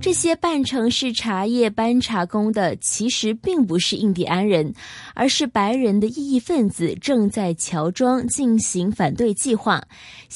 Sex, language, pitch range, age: female, Chinese, 190-260 Hz, 20-39